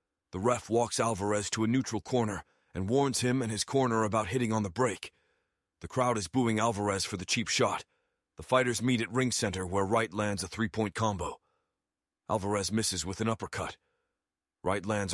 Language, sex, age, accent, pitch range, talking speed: English, male, 30-49, American, 95-115 Hz, 185 wpm